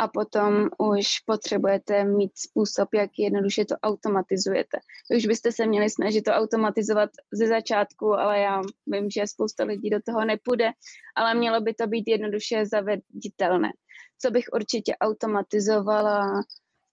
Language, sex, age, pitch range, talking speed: Czech, female, 20-39, 210-225 Hz, 140 wpm